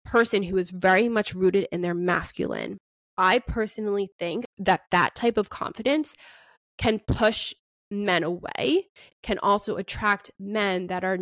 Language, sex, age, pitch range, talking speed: English, female, 20-39, 185-215 Hz, 145 wpm